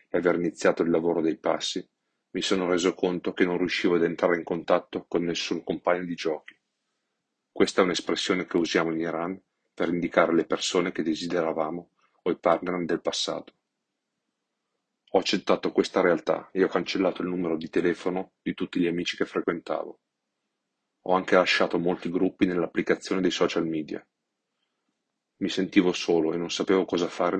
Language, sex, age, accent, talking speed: English, male, 30-49, Italian, 160 wpm